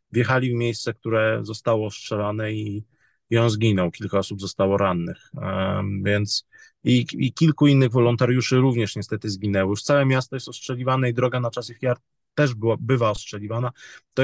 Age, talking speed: 20-39, 165 wpm